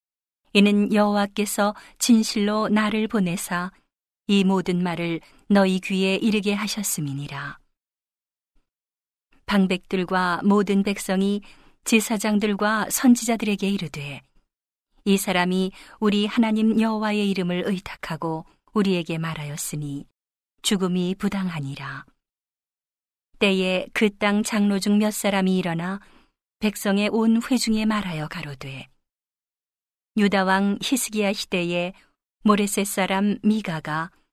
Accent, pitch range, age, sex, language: native, 180-210 Hz, 40-59, female, Korean